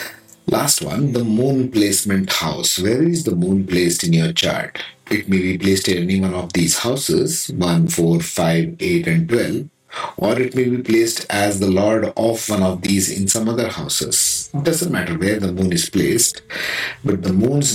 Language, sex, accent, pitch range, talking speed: English, male, Indian, 90-115 Hz, 195 wpm